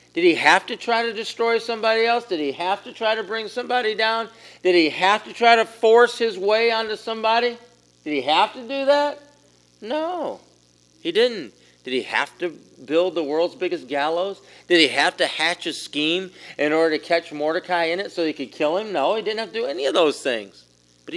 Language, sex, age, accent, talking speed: English, male, 40-59, American, 220 wpm